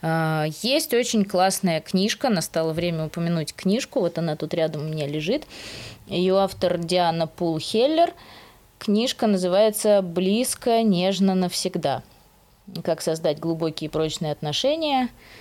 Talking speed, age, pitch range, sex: 120 wpm, 20-39, 160-220 Hz, female